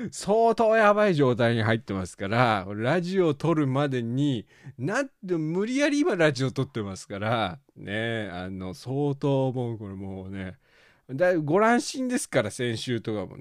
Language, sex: Japanese, male